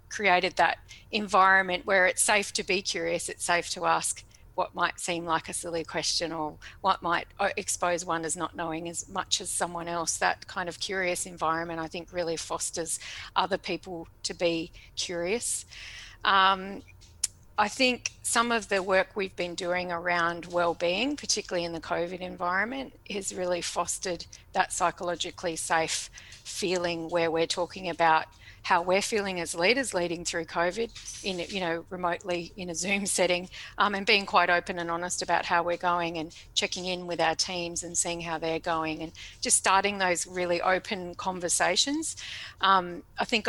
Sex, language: female, English